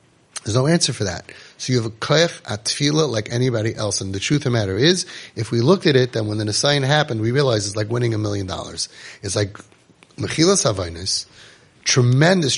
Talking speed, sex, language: 215 wpm, male, English